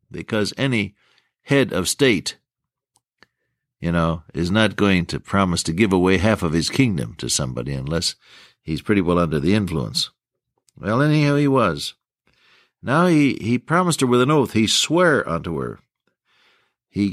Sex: male